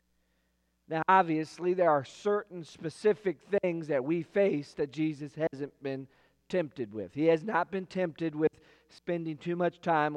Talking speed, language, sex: 155 wpm, English, male